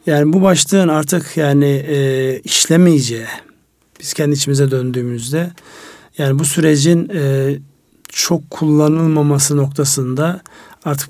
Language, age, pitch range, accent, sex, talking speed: Turkish, 50-69, 130-150 Hz, native, male, 90 wpm